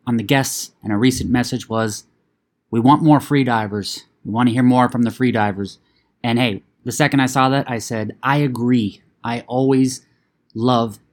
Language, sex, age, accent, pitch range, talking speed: English, male, 20-39, American, 110-135 Hz, 195 wpm